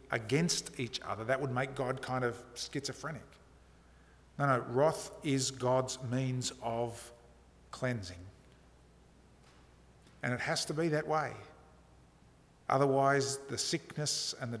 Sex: male